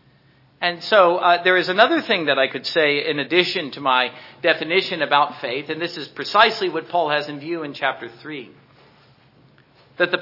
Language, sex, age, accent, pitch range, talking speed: English, male, 50-69, American, 140-190 Hz, 190 wpm